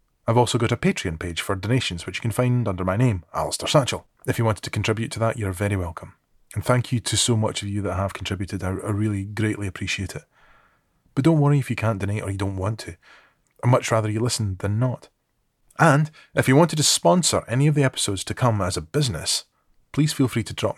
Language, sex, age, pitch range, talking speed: English, male, 30-49, 100-125 Hz, 235 wpm